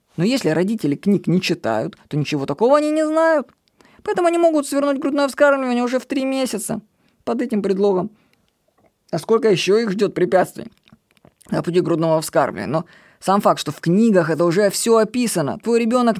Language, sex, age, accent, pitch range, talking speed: Russian, female, 20-39, native, 170-245 Hz, 175 wpm